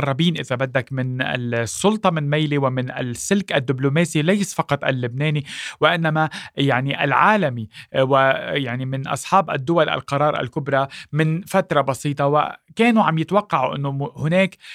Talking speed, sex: 120 wpm, male